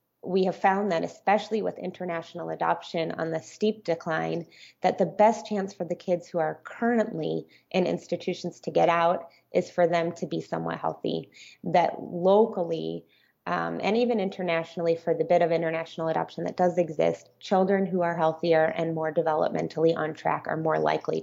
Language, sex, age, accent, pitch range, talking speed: English, female, 30-49, American, 160-180 Hz, 170 wpm